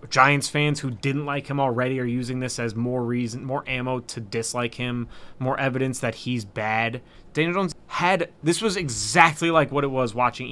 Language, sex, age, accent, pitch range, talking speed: English, male, 20-39, American, 115-170 Hz, 195 wpm